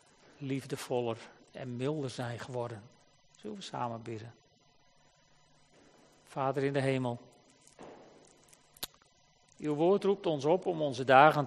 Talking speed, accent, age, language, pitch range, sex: 110 wpm, Dutch, 40-59, Dutch, 140-165 Hz, male